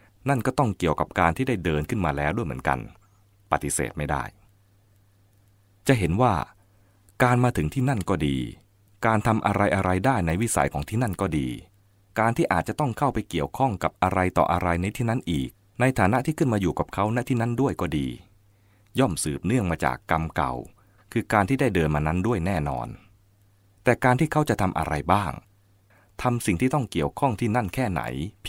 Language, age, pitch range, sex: English, 20-39, 85-115 Hz, male